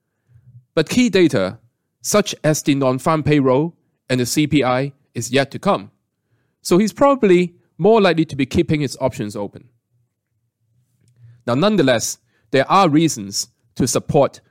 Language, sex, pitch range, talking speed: English, male, 120-155 Hz, 135 wpm